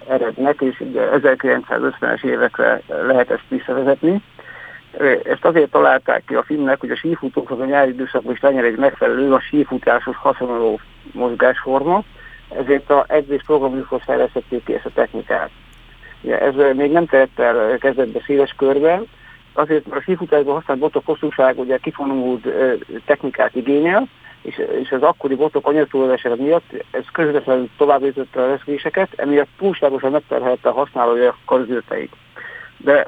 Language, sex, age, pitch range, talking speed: Hungarian, male, 50-69, 125-150 Hz, 140 wpm